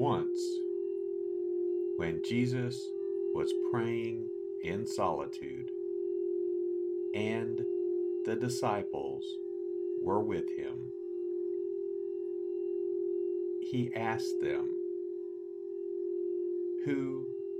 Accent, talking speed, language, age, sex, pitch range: American, 60 wpm, English, 50-69, male, 360-370 Hz